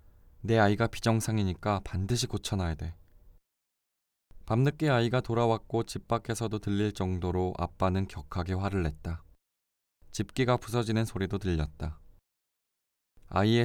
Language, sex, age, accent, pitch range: Korean, male, 20-39, native, 80-110 Hz